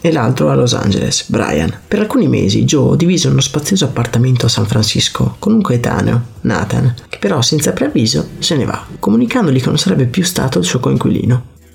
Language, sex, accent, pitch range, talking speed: Italian, male, native, 120-160 Hz, 190 wpm